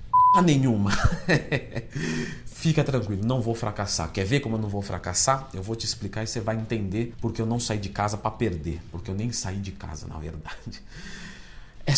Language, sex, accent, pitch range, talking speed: Portuguese, male, Brazilian, 110-175 Hz, 190 wpm